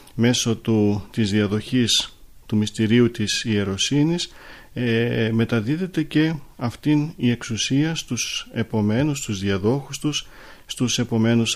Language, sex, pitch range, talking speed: Greek, male, 110-135 Hz, 110 wpm